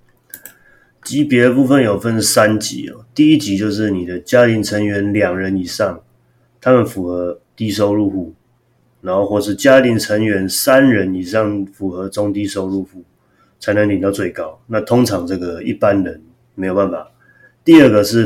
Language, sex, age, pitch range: Chinese, male, 30-49, 95-115 Hz